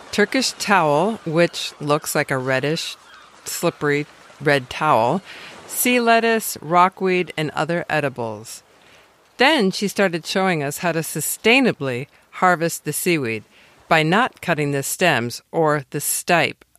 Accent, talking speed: American, 125 wpm